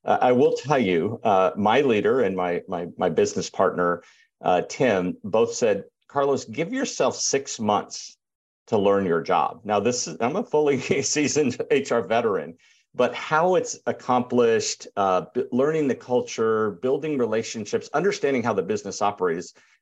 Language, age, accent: English, 50-69, American